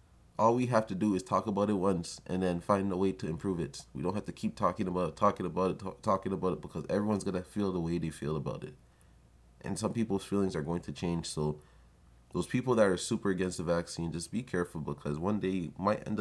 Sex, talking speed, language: male, 255 wpm, English